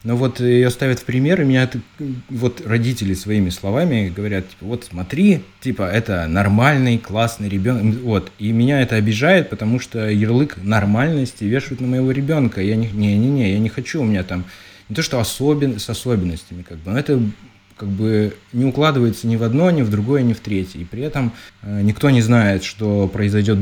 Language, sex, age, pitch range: Russian, male, 20-39, 95-120 Hz